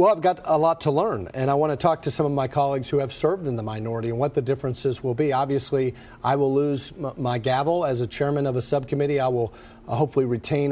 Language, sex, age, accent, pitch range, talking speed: English, male, 50-69, American, 120-145 Hz, 250 wpm